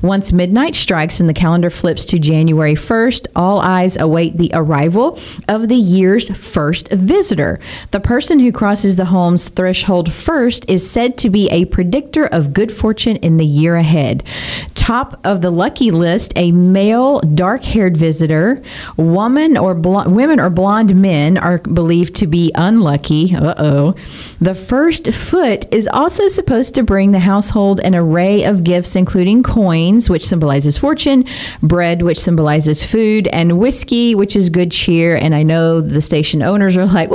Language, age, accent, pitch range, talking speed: English, 40-59, American, 170-230 Hz, 160 wpm